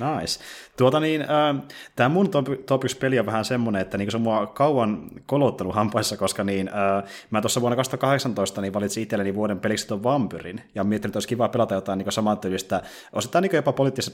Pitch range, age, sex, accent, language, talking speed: 95-110 Hz, 30-49, male, native, Finnish, 200 wpm